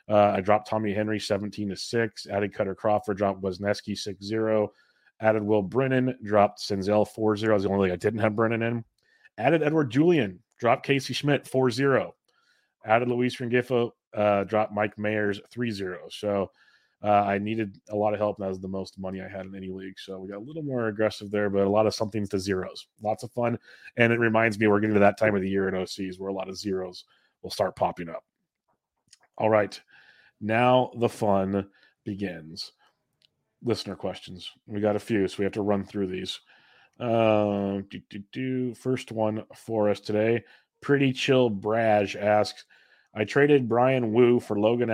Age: 30-49